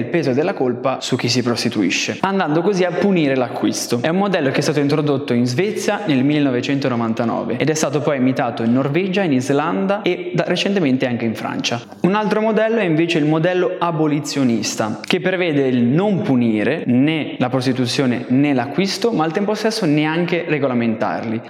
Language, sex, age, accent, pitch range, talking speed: Italian, male, 20-39, native, 125-175 Hz, 175 wpm